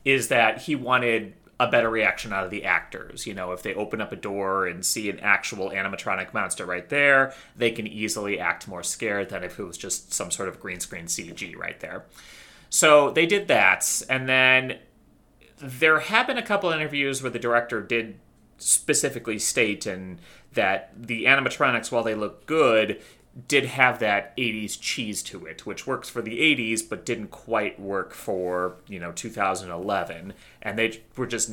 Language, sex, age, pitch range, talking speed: English, male, 30-49, 95-125 Hz, 185 wpm